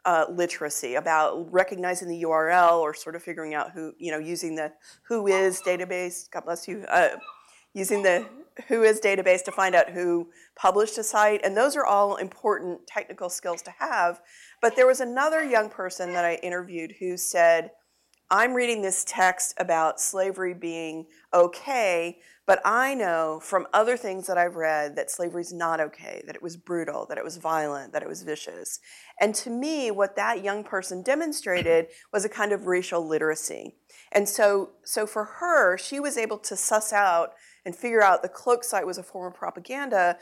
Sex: female